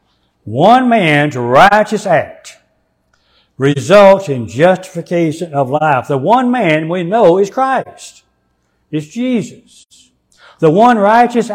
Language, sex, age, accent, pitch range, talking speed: English, male, 60-79, American, 140-205 Hz, 110 wpm